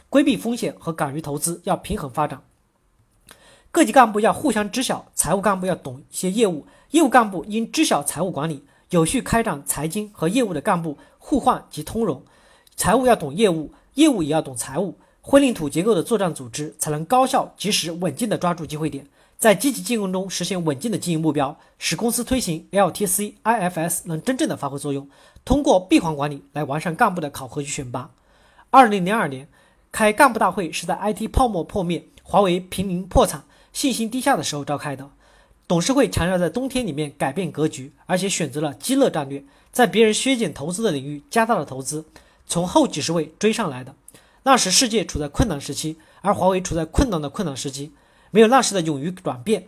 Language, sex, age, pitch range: Chinese, male, 40-59, 155-225 Hz